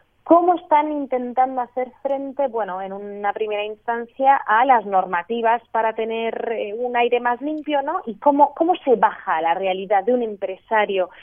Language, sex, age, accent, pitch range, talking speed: Spanish, female, 30-49, Spanish, 200-255 Hz, 160 wpm